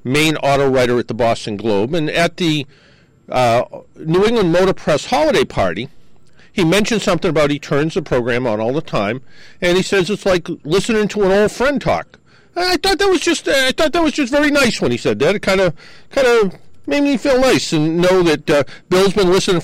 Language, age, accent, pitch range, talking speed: English, 50-69, American, 140-200 Hz, 215 wpm